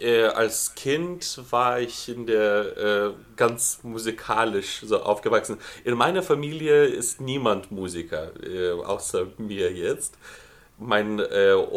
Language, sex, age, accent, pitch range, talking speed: German, male, 30-49, German, 105-145 Hz, 115 wpm